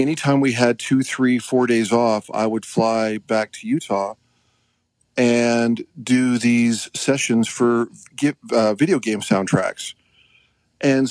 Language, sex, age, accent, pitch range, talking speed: English, male, 40-59, American, 115-130 Hz, 135 wpm